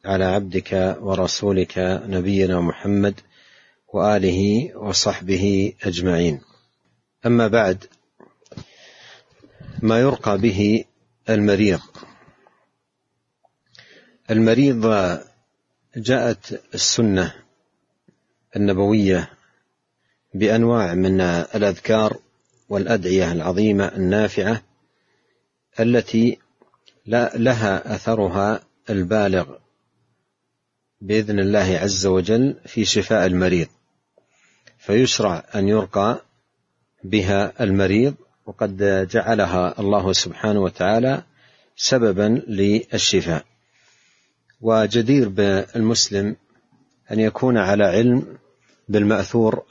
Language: Arabic